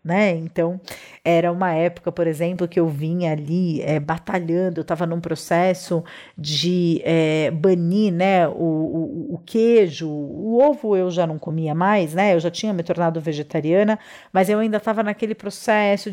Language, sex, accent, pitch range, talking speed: Portuguese, female, Brazilian, 165-215 Hz, 160 wpm